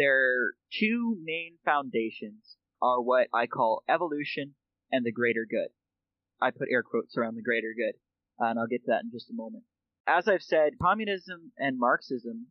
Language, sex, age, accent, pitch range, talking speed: English, male, 20-39, American, 120-165 Hz, 175 wpm